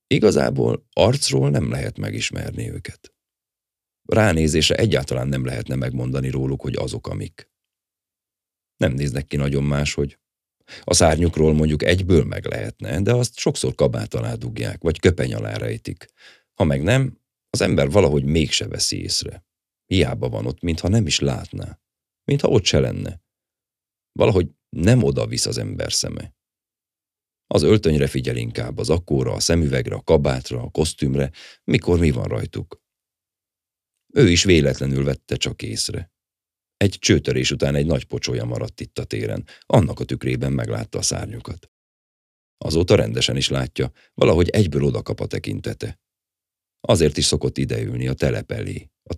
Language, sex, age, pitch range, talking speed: Hungarian, male, 40-59, 70-100 Hz, 145 wpm